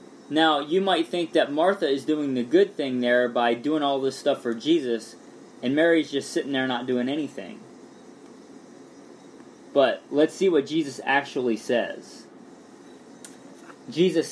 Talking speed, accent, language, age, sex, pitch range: 145 wpm, American, English, 20-39, male, 130-170 Hz